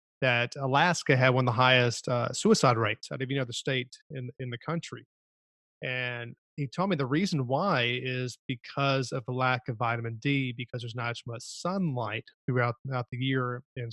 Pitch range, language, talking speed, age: 125-150 Hz, English, 195 wpm, 30-49